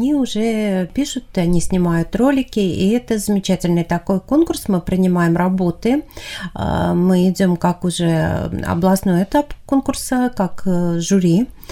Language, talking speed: Russian, 120 wpm